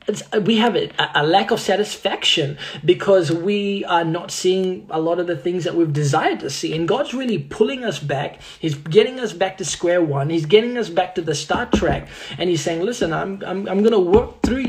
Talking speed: 215 wpm